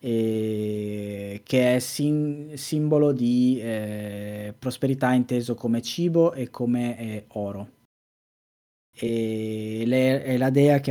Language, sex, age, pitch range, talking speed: Italian, male, 20-39, 110-140 Hz, 115 wpm